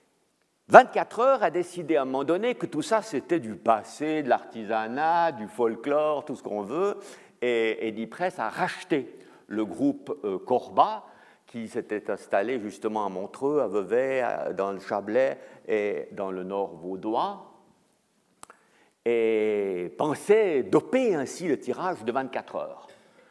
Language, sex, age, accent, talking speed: French, male, 50-69, French, 145 wpm